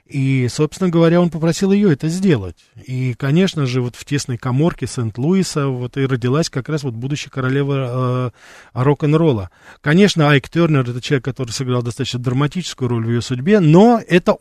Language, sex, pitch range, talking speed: Russian, male, 125-150 Hz, 175 wpm